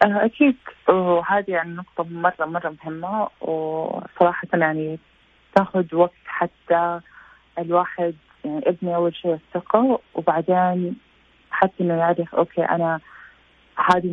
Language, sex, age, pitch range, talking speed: Arabic, female, 20-39, 165-185 Hz, 105 wpm